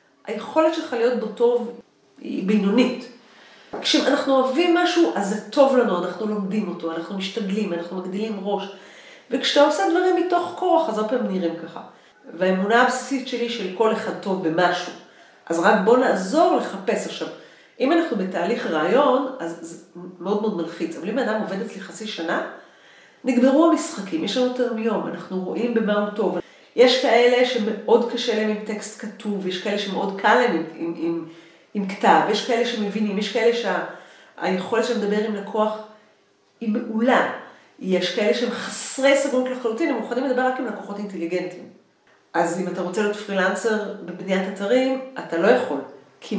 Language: Hebrew